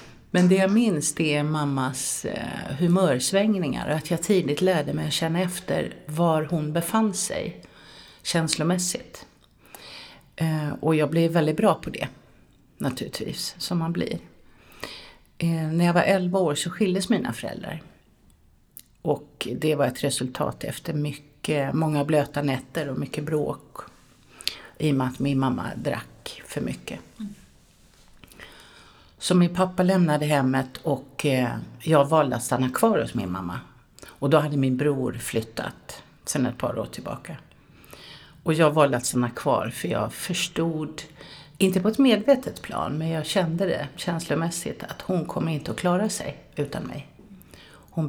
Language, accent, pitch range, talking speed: Swedish, native, 140-180 Hz, 145 wpm